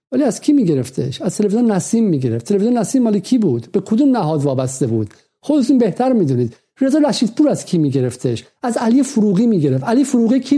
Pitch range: 175-240 Hz